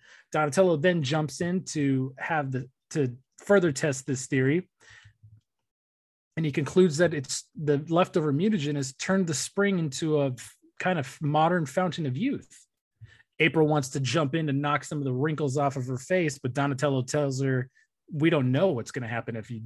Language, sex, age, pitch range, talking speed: English, male, 30-49, 130-165 Hz, 185 wpm